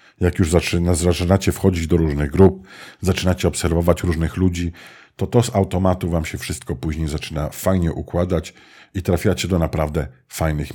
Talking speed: 150 wpm